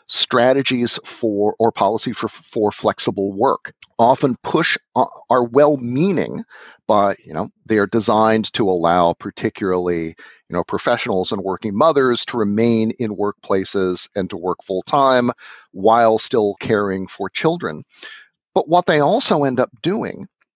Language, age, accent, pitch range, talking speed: English, 40-59, American, 115-145 Hz, 145 wpm